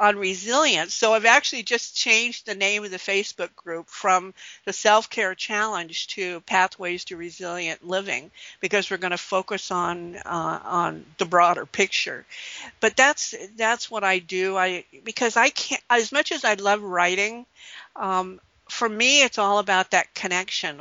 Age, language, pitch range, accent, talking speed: 50-69, English, 180-215 Hz, American, 165 wpm